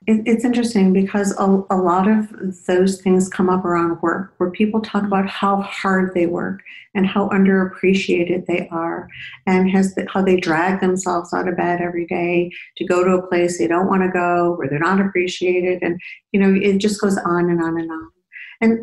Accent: American